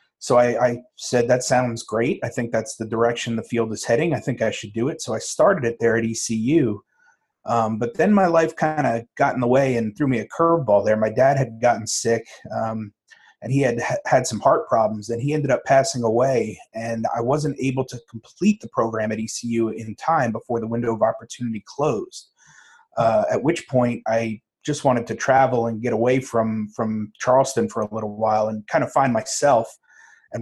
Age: 30-49